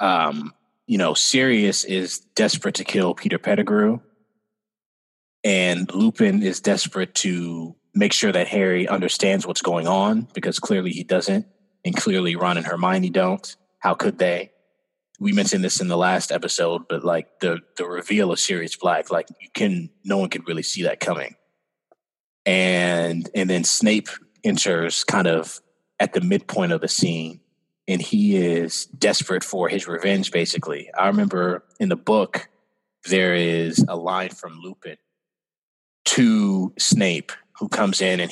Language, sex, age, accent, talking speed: English, male, 20-39, American, 155 wpm